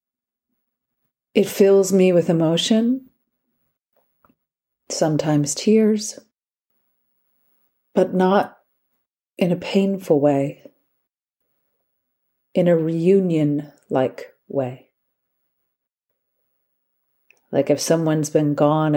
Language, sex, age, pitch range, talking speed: English, female, 40-59, 150-200 Hz, 70 wpm